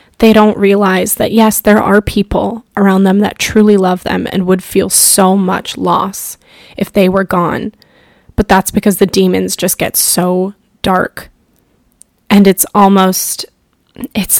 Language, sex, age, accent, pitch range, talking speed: English, female, 10-29, American, 190-215 Hz, 155 wpm